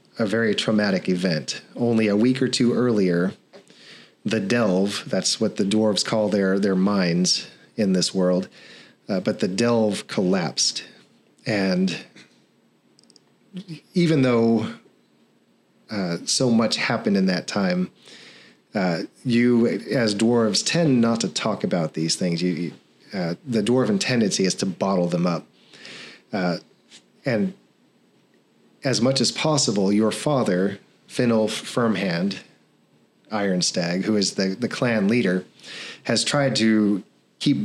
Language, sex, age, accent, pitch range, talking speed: English, male, 40-59, American, 95-120 Hz, 125 wpm